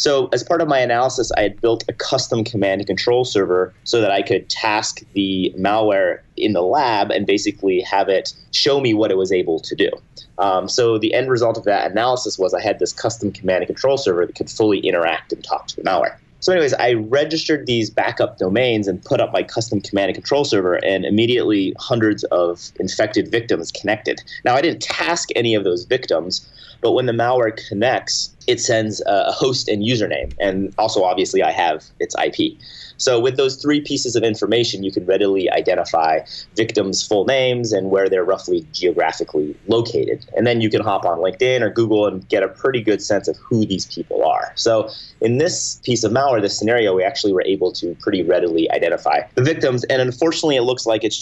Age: 30-49